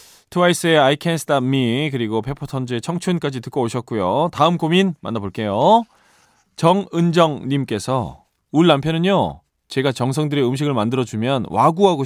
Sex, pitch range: male, 115-175 Hz